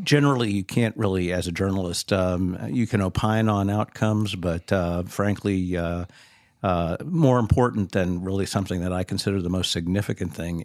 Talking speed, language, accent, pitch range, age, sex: 170 wpm, English, American, 90-105 Hz, 50-69, male